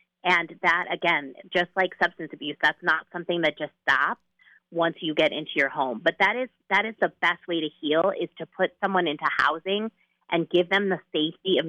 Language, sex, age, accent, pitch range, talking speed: English, female, 30-49, American, 155-180 Hz, 210 wpm